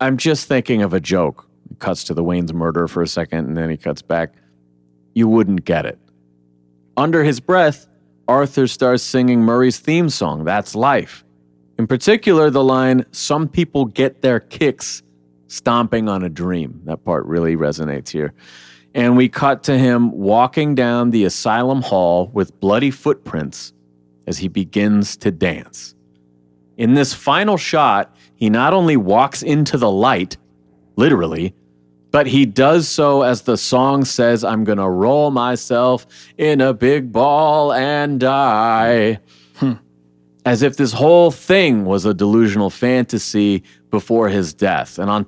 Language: English